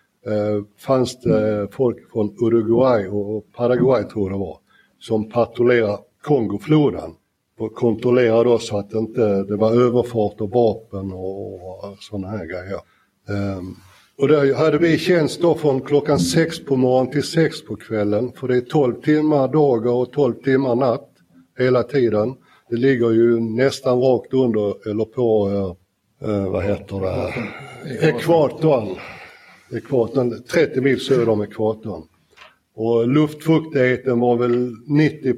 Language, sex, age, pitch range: Swedish, male, 60-79, 105-135 Hz